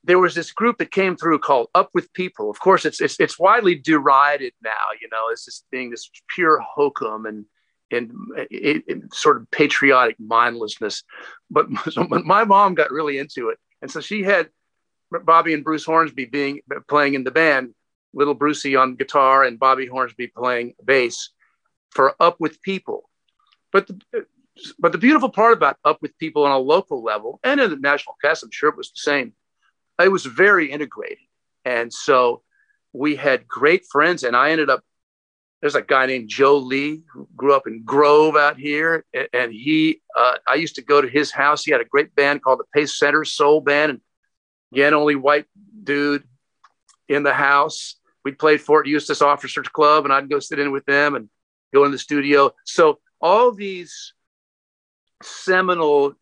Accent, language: American, English